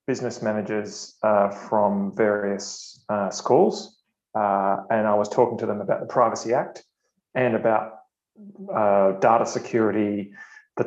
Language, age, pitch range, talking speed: English, 30-49, 105-120 Hz, 135 wpm